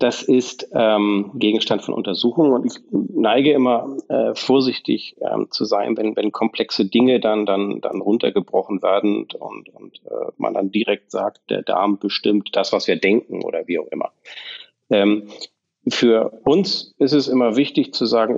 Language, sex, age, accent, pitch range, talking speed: German, male, 40-59, German, 100-125 Hz, 165 wpm